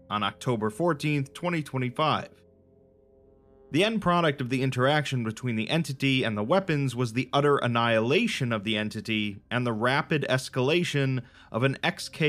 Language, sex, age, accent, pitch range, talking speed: English, male, 30-49, American, 110-140 Hz, 145 wpm